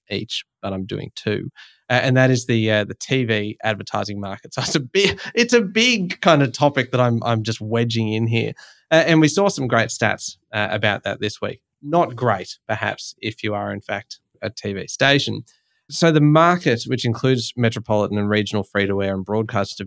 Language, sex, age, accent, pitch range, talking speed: English, male, 20-39, Australian, 105-140 Hz, 205 wpm